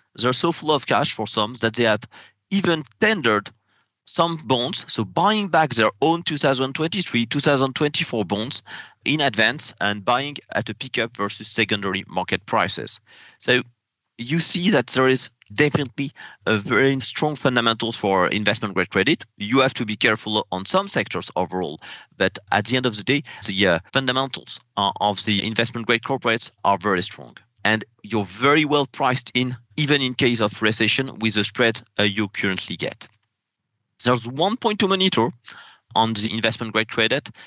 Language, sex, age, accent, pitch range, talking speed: English, male, 40-59, French, 110-140 Hz, 160 wpm